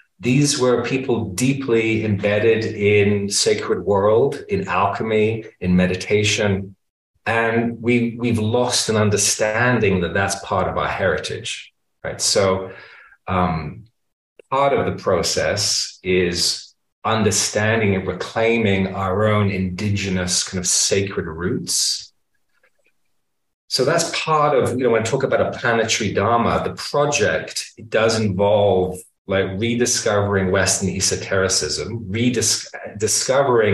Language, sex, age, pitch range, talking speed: English, male, 30-49, 95-115 Hz, 115 wpm